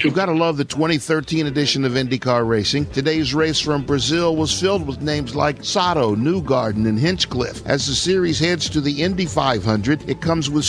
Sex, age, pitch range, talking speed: male, 50-69, 135-165 Hz, 190 wpm